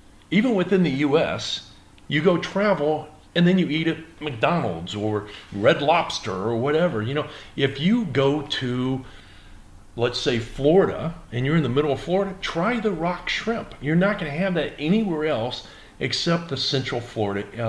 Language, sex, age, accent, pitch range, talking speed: English, male, 40-59, American, 100-155 Hz, 170 wpm